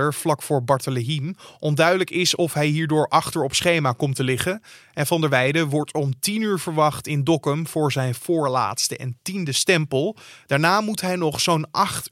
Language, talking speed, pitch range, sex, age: Dutch, 185 wpm, 140-170 Hz, male, 20-39